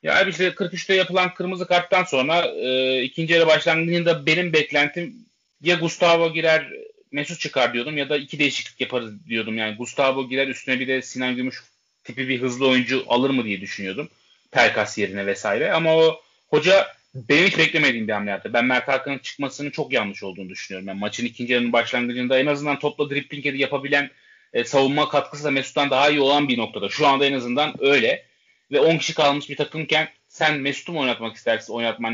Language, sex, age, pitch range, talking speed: Turkish, male, 30-49, 125-155 Hz, 185 wpm